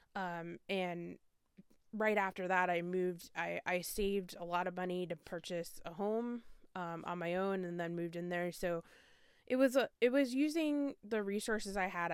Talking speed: 185 wpm